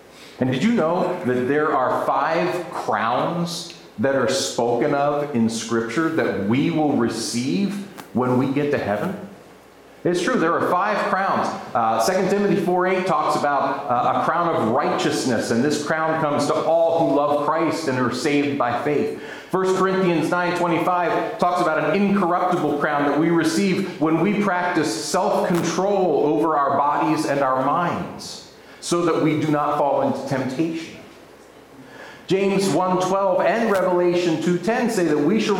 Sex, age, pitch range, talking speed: male, 40-59, 145-180 Hz, 155 wpm